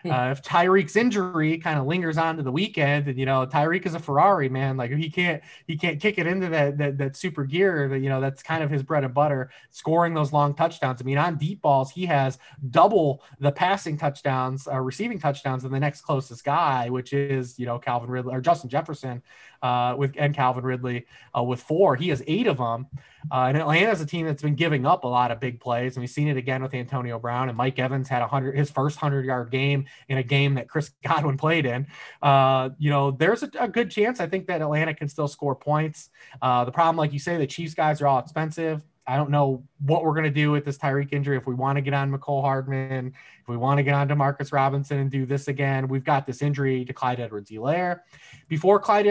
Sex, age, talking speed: male, 20-39, 245 wpm